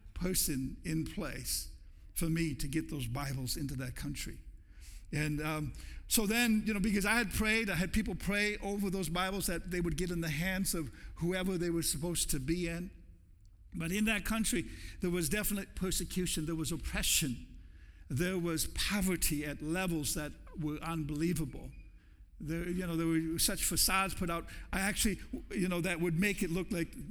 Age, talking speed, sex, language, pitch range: 60-79, 180 wpm, male, English, 150-190 Hz